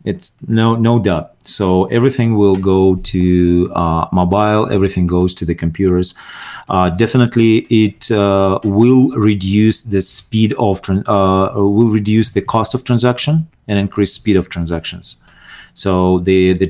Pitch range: 90-105 Hz